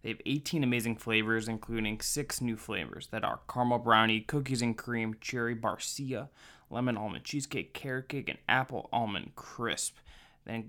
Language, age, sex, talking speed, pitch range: English, 20-39, male, 155 wpm, 110-125 Hz